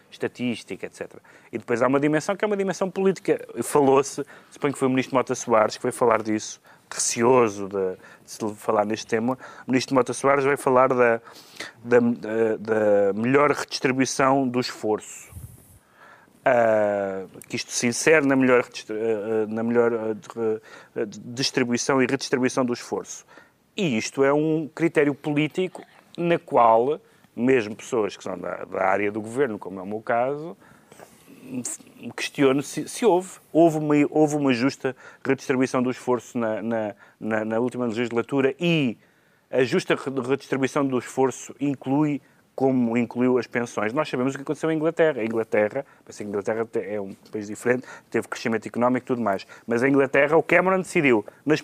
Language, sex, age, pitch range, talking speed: Portuguese, male, 30-49, 115-150 Hz, 155 wpm